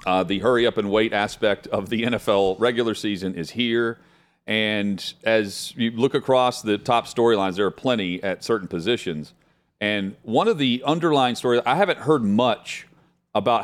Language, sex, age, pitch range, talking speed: English, male, 40-59, 95-120 Hz, 160 wpm